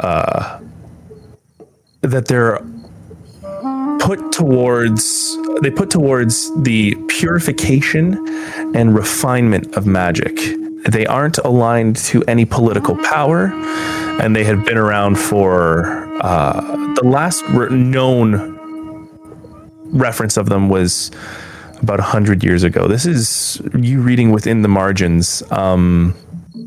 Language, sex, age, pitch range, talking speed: English, male, 20-39, 110-175 Hz, 110 wpm